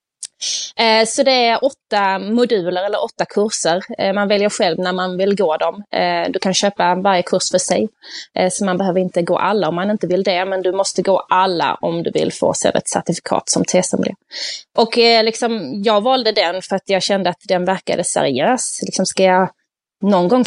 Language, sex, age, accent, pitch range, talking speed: Swedish, female, 20-39, native, 185-235 Hz, 210 wpm